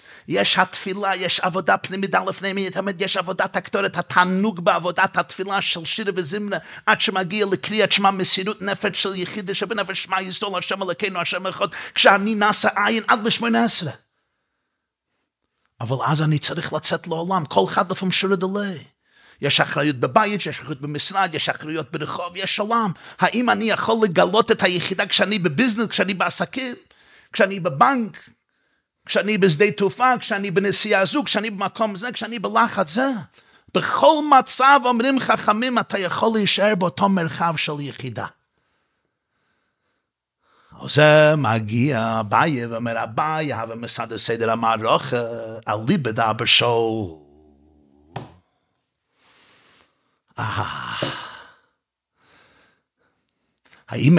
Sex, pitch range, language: male, 145-210 Hz, Hebrew